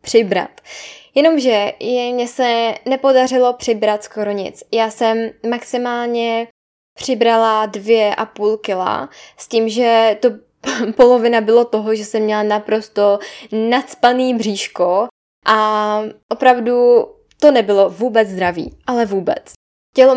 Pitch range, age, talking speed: 215-240 Hz, 10-29, 115 wpm